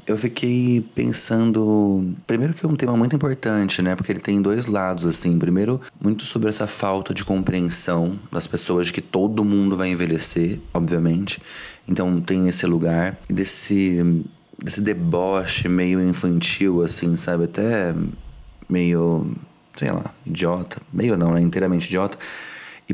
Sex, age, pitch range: male, 20-39, 85-100 Hz